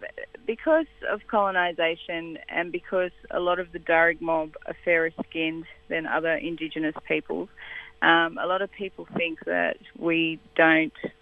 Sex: female